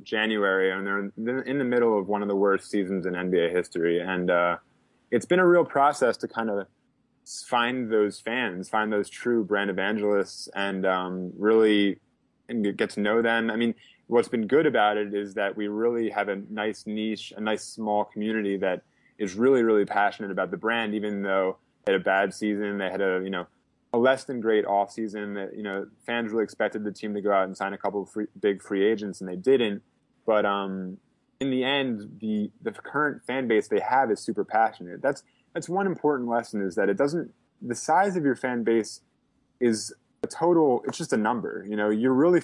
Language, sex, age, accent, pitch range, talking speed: English, male, 20-39, American, 100-120 Hz, 210 wpm